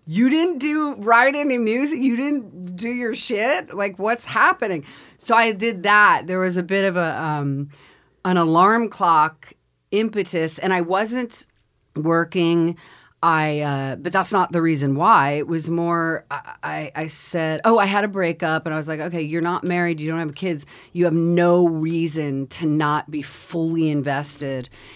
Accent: American